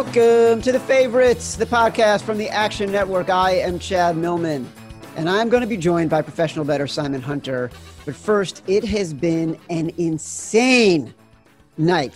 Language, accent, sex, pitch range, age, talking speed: English, American, male, 140-180 Hz, 40-59, 165 wpm